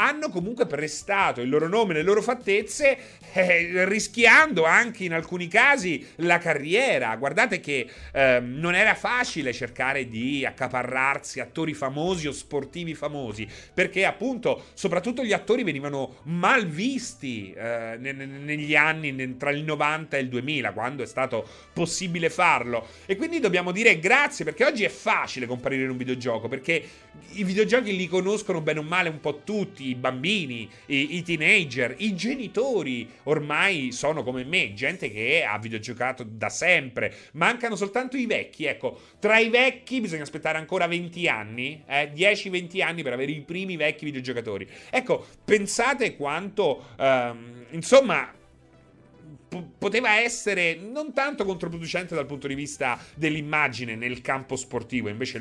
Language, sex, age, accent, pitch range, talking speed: Italian, male, 30-49, native, 135-200 Hz, 145 wpm